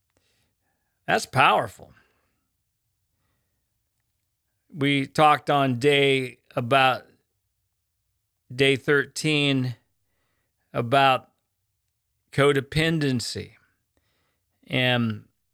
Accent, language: American, English